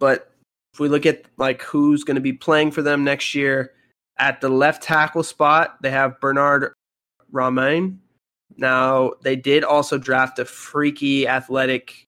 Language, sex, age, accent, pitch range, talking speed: English, male, 20-39, American, 125-135 Hz, 160 wpm